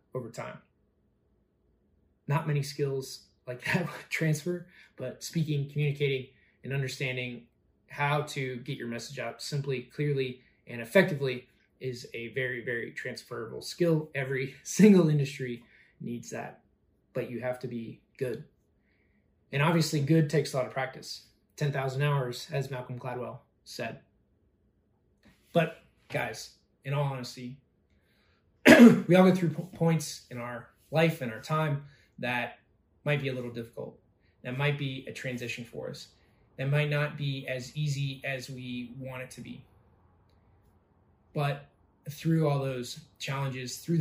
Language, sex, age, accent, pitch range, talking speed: English, male, 20-39, American, 125-145 Hz, 140 wpm